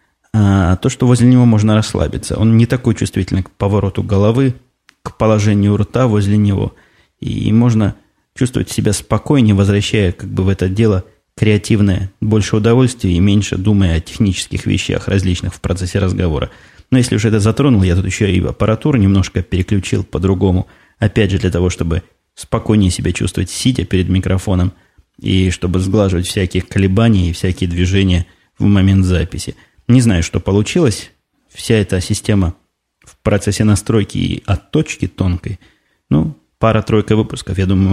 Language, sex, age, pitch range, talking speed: Russian, male, 20-39, 95-110 Hz, 150 wpm